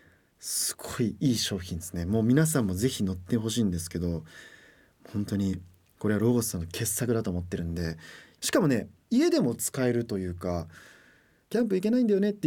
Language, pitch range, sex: Japanese, 95-150 Hz, male